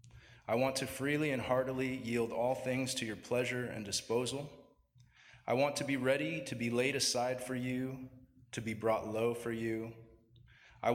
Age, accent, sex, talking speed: 20-39, American, male, 175 wpm